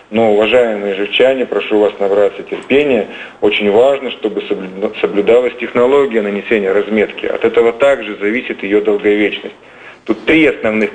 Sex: male